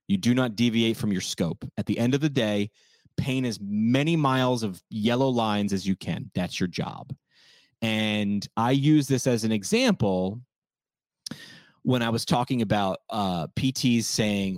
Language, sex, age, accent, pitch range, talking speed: English, male, 30-49, American, 100-125 Hz, 170 wpm